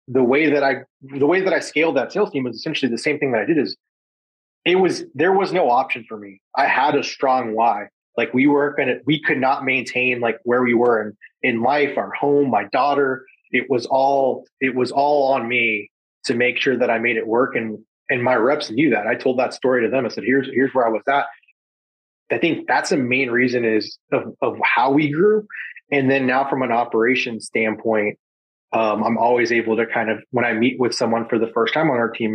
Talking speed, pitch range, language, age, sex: 235 wpm, 115-140 Hz, English, 30-49, male